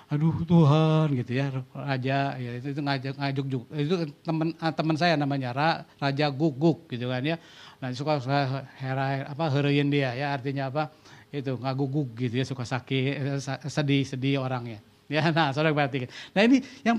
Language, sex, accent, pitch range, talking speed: Indonesian, male, native, 135-170 Hz, 160 wpm